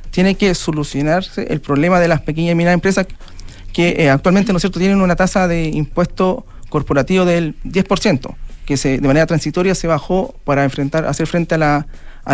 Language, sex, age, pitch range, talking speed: Spanish, male, 40-59, 150-185 Hz, 190 wpm